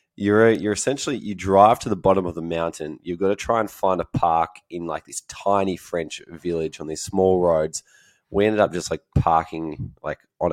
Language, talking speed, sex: English, 210 wpm, male